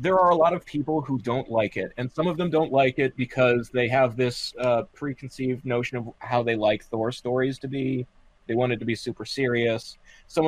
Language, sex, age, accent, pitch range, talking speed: English, male, 30-49, American, 115-135 Hz, 230 wpm